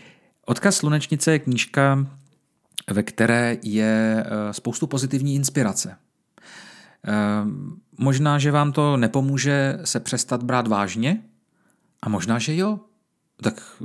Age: 40-59